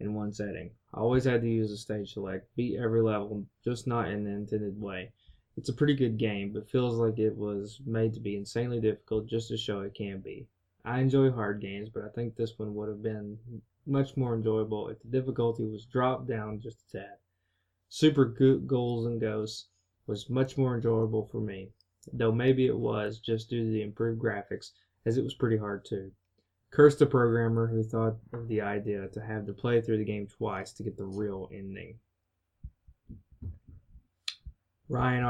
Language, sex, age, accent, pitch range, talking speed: English, male, 20-39, American, 105-120 Hz, 190 wpm